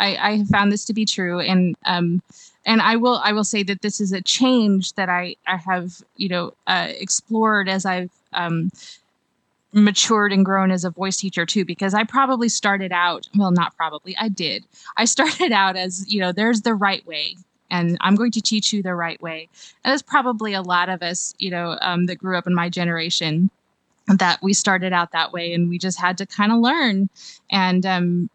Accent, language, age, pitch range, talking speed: American, English, 20-39, 180-210 Hz, 215 wpm